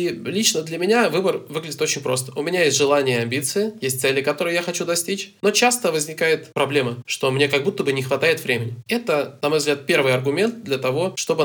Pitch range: 130-155 Hz